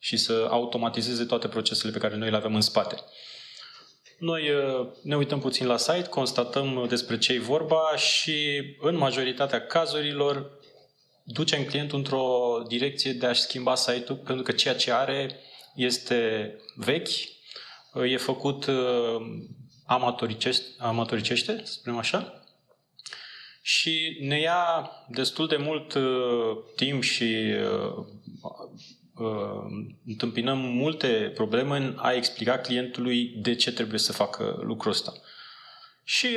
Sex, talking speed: male, 115 wpm